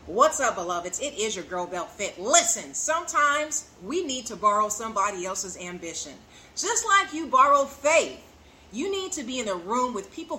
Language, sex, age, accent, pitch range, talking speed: English, female, 30-49, American, 225-315 Hz, 185 wpm